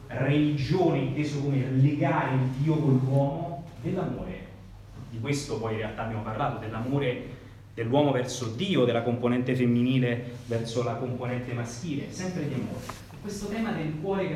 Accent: native